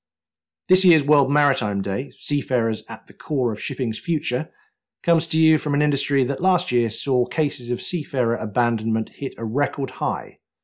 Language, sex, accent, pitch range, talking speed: English, male, British, 105-135 Hz, 170 wpm